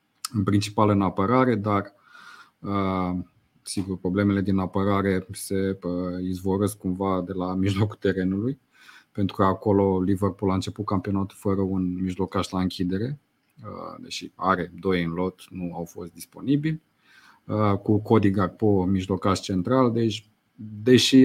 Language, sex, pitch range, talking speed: Romanian, male, 95-110 Hz, 125 wpm